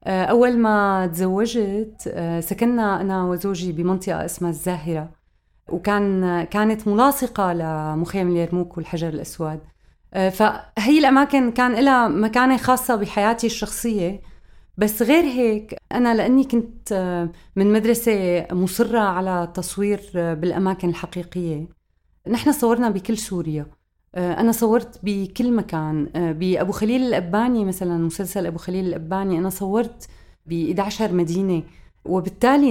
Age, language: 30-49, Arabic